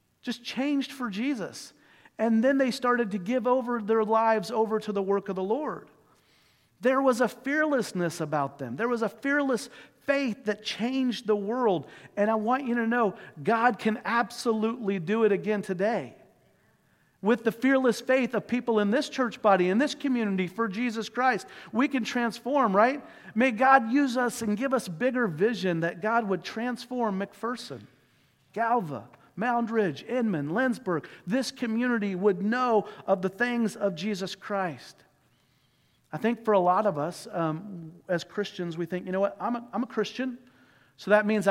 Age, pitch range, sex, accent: 50-69, 175-240 Hz, male, American